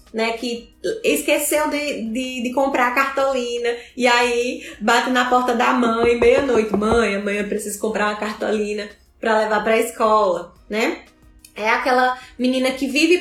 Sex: female